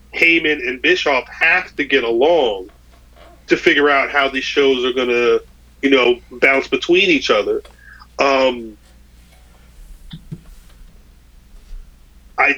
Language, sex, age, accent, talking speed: English, male, 30-49, American, 115 wpm